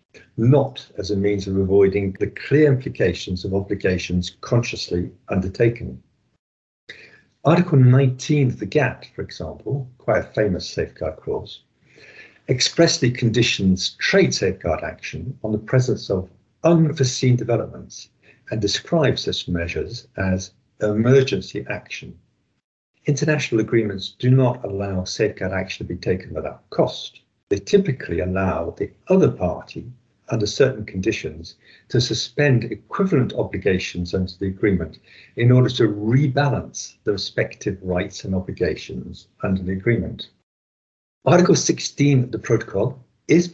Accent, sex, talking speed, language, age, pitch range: British, male, 125 wpm, English, 50-69, 95-130 Hz